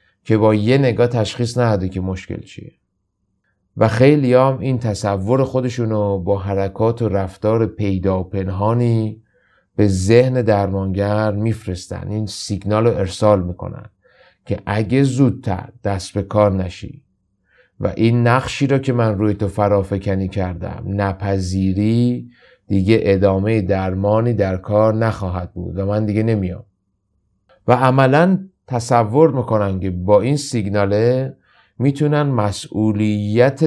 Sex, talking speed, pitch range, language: male, 125 wpm, 100-125 Hz, Persian